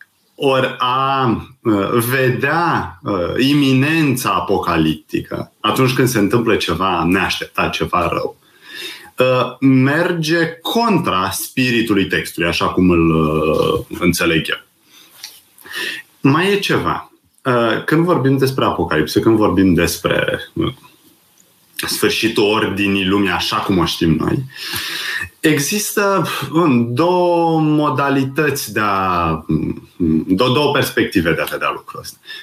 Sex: male